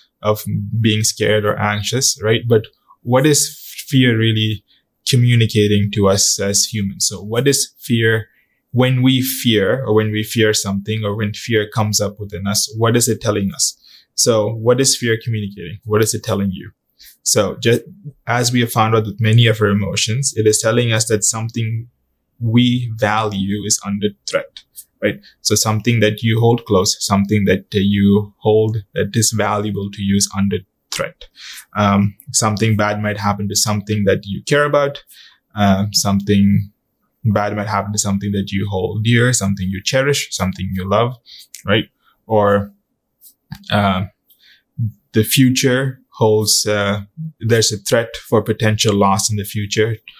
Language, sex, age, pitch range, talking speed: English, male, 20-39, 100-115 Hz, 165 wpm